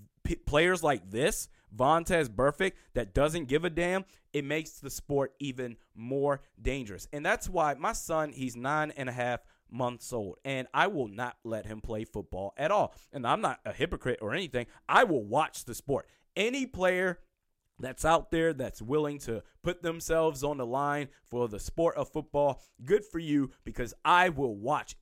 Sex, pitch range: male, 120-155 Hz